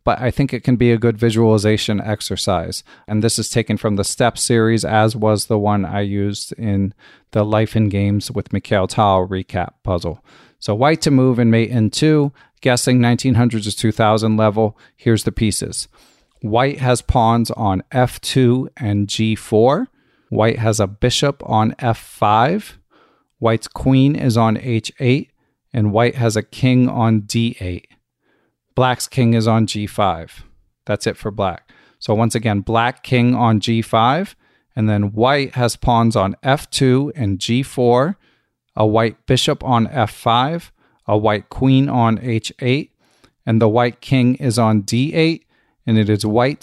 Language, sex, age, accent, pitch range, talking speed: English, male, 40-59, American, 110-130 Hz, 155 wpm